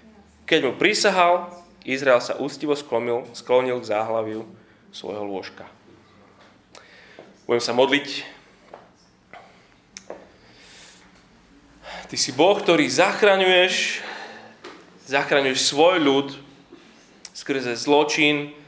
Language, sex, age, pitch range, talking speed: Slovak, male, 20-39, 110-145 Hz, 80 wpm